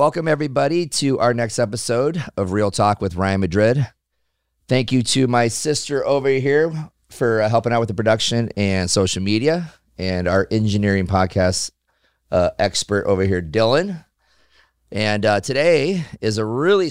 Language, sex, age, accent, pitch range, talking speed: English, male, 30-49, American, 90-120 Hz, 155 wpm